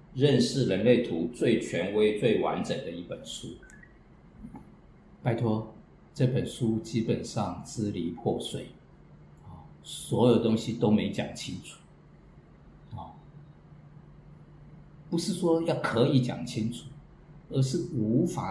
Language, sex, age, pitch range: Chinese, male, 50-69, 110-150 Hz